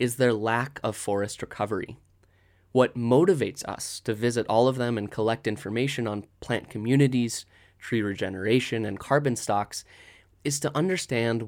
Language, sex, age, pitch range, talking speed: English, male, 20-39, 105-135 Hz, 145 wpm